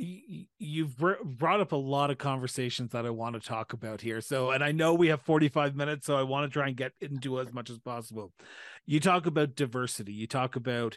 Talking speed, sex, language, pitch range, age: 225 wpm, male, English, 130-155 Hz, 30-49